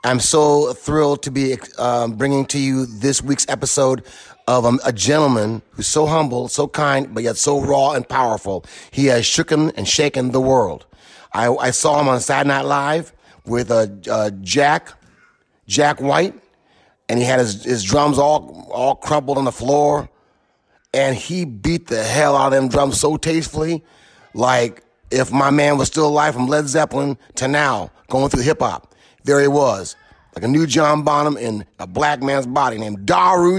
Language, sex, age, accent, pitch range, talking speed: English, male, 30-49, American, 130-175 Hz, 175 wpm